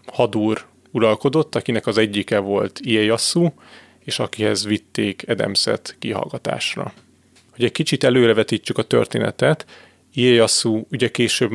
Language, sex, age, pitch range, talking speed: Hungarian, male, 30-49, 110-120 Hz, 110 wpm